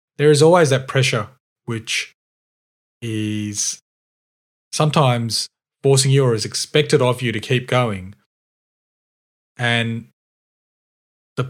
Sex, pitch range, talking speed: male, 110-130 Hz, 105 wpm